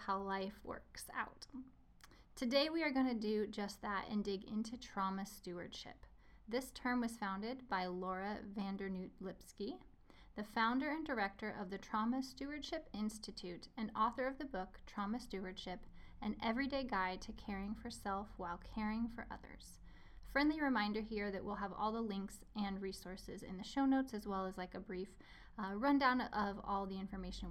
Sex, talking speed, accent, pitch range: female, 170 wpm, American, 195-235 Hz